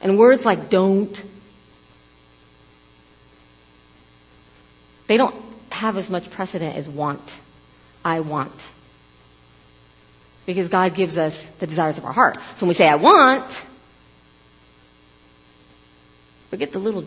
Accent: American